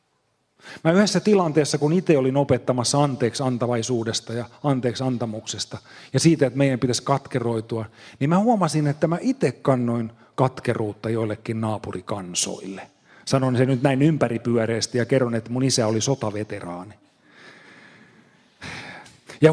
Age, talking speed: 30-49, 125 wpm